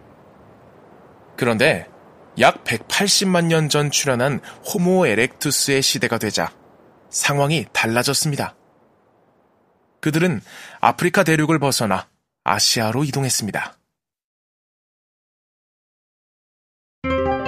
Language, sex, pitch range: Korean, male, 115-150 Hz